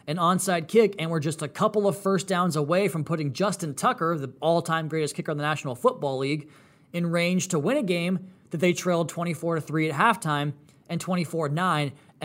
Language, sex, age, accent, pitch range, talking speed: English, male, 20-39, American, 150-195 Hz, 190 wpm